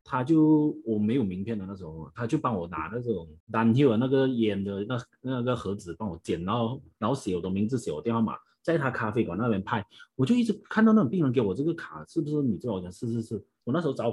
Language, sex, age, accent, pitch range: Chinese, male, 30-49, native, 100-130 Hz